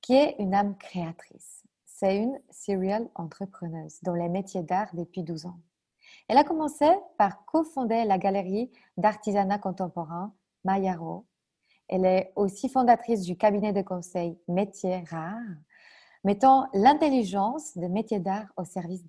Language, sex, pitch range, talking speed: French, female, 180-220 Hz, 135 wpm